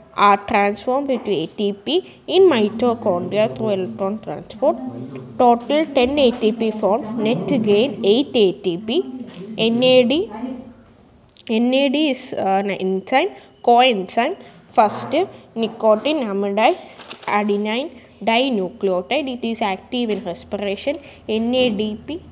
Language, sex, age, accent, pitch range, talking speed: English, female, 20-39, Indian, 200-250 Hz, 90 wpm